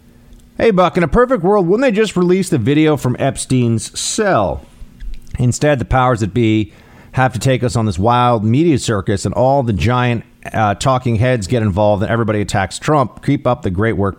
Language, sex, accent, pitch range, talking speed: English, male, American, 95-130 Hz, 200 wpm